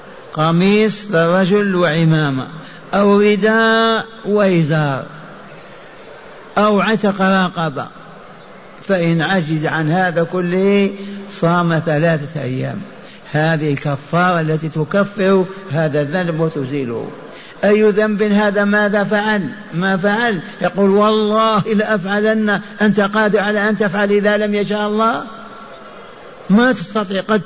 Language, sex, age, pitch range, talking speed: Arabic, male, 60-79, 185-210 Hz, 100 wpm